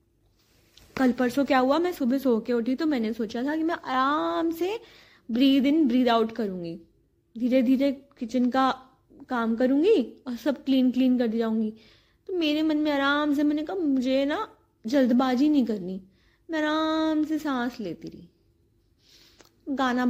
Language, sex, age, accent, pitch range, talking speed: Hindi, female, 20-39, native, 220-305 Hz, 160 wpm